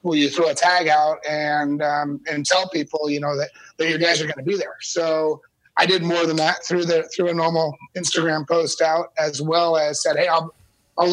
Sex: male